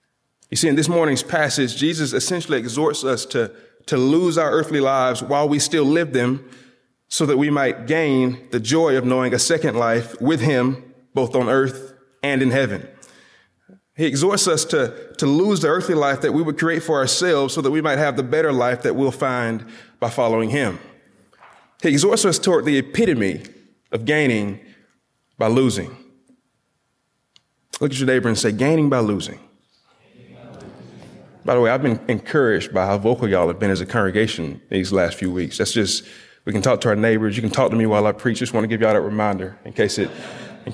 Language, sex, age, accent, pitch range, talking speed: English, male, 30-49, American, 115-150 Hz, 195 wpm